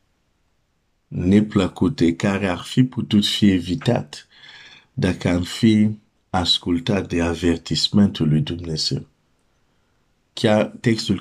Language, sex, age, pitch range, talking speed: Romanian, male, 50-69, 90-105 Hz, 100 wpm